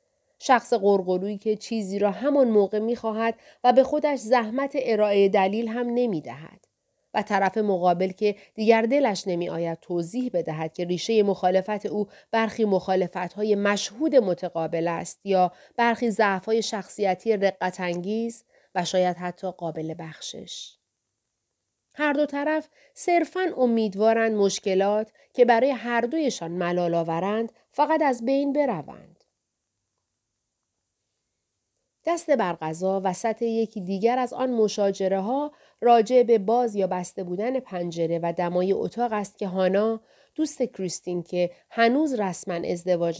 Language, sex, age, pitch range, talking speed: Persian, female, 30-49, 180-235 Hz, 125 wpm